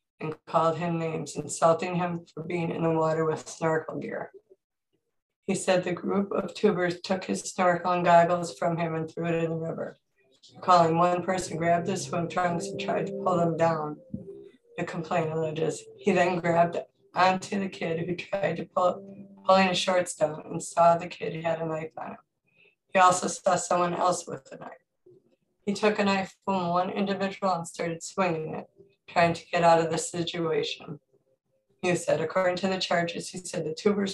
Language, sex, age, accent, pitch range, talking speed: English, female, 20-39, American, 165-190 Hz, 190 wpm